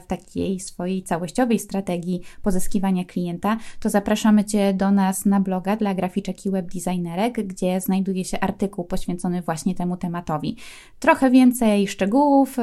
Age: 20-39